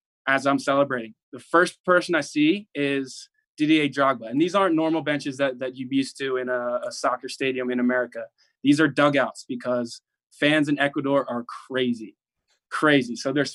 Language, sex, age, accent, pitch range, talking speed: English, male, 20-39, American, 135-170 Hz, 180 wpm